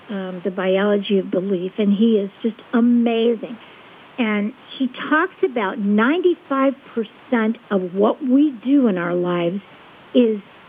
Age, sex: 50-69, female